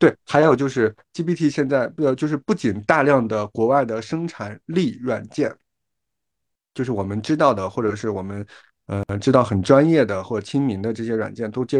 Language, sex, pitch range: Chinese, male, 110-140 Hz